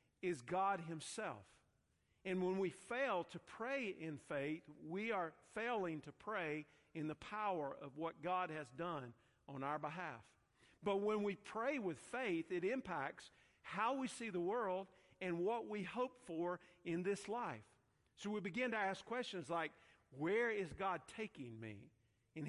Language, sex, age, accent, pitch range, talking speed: English, male, 50-69, American, 140-185 Hz, 165 wpm